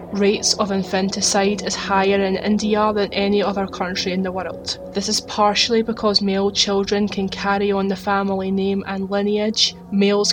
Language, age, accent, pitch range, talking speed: English, 20-39, British, 195-210 Hz, 170 wpm